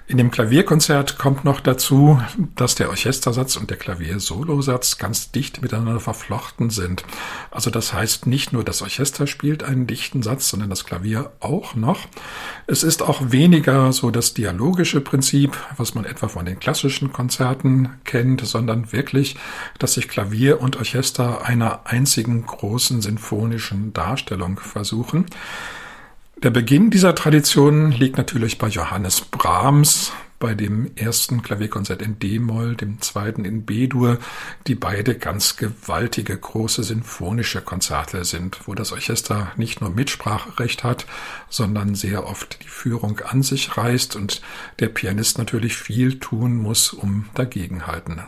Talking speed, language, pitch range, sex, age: 140 wpm, German, 105-135 Hz, male, 50-69